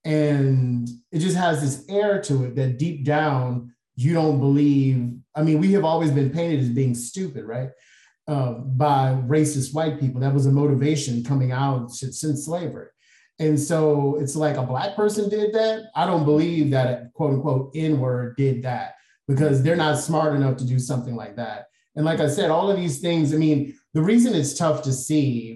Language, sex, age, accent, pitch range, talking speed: English, male, 30-49, American, 130-155 Hz, 195 wpm